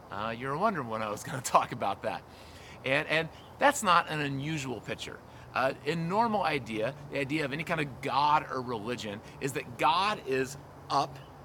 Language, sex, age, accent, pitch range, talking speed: English, male, 30-49, American, 125-165 Hz, 195 wpm